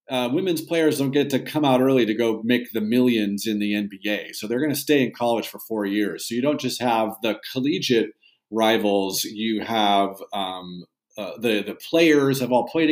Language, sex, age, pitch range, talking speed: English, male, 40-59, 110-150 Hz, 210 wpm